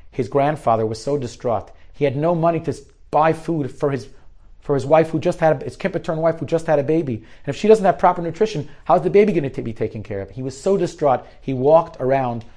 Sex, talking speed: male, 255 wpm